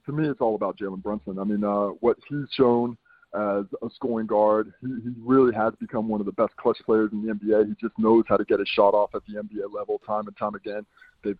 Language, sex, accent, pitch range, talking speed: English, male, American, 105-130 Hz, 260 wpm